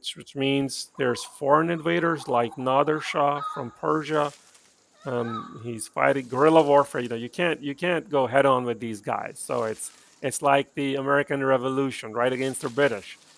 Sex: male